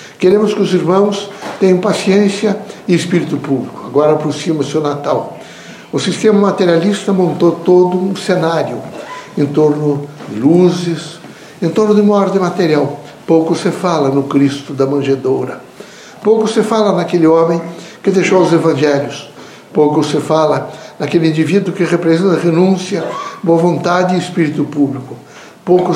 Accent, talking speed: Brazilian, 145 wpm